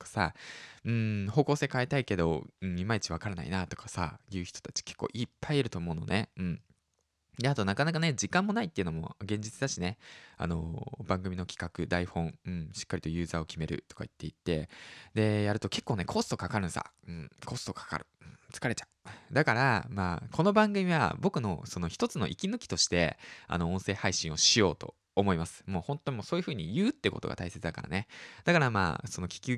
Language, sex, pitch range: Japanese, male, 85-125 Hz